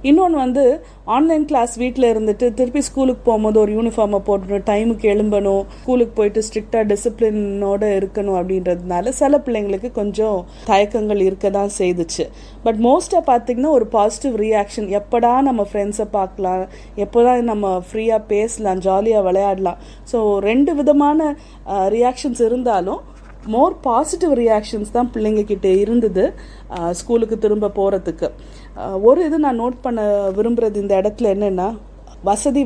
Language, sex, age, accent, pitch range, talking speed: Tamil, female, 30-49, native, 200-250 Hz, 125 wpm